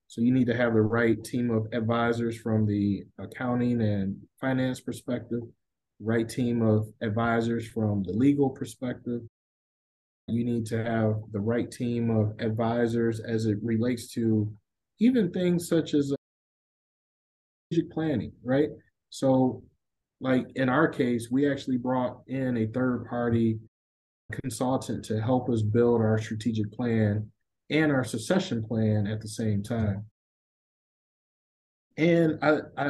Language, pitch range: English, 115-140 Hz